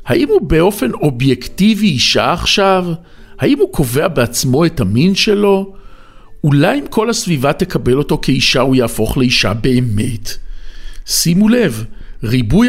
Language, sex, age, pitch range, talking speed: Hebrew, male, 50-69, 120-195 Hz, 130 wpm